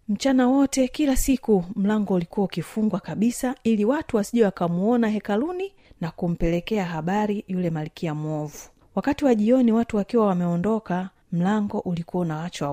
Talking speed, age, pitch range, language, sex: 130 wpm, 30-49, 175-240 Hz, Swahili, female